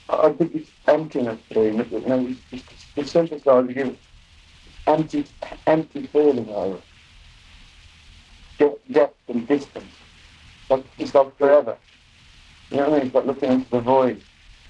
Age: 50-69